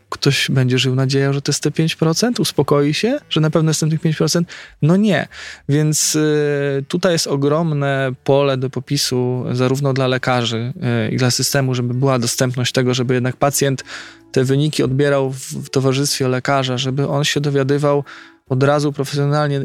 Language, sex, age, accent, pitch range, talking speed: Polish, male, 20-39, native, 130-150 Hz, 160 wpm